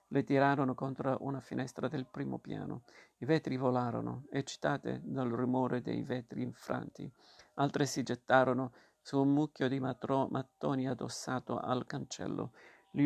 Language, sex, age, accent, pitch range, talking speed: Italian, male, 50-69, native, 125-140 Hz, 135 wpm